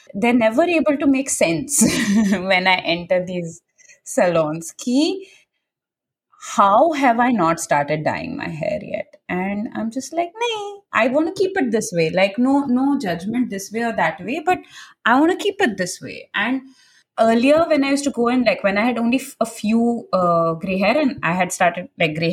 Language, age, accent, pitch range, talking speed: English, 20-39, Indian, 180-265 Hz, 195 wpm